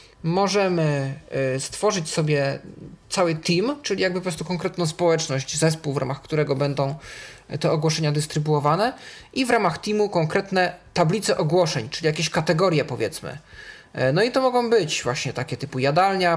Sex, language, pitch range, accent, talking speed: male, Polish, 145-180 Hz, native, 145 wpm